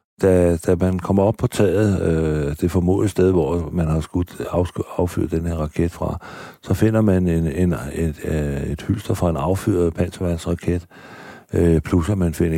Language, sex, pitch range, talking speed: Danish, male, 80-95 Hz, 185 wpm